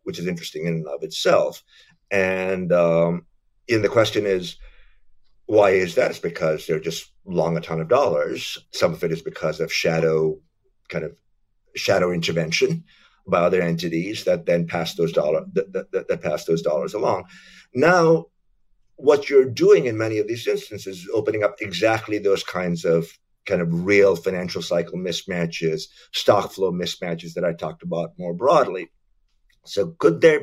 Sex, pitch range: male, 85-120 Hz